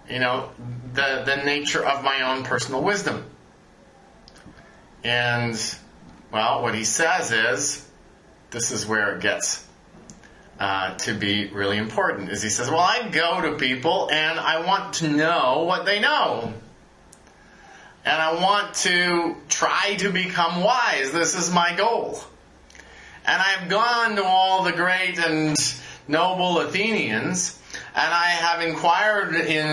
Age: 30-49